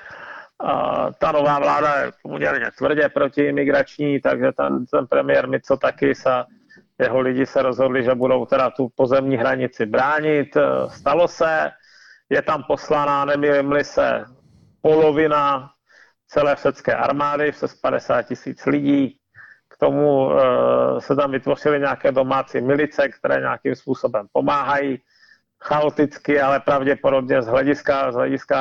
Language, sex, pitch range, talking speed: Czech, male, 130-150 Hz, 125 wpm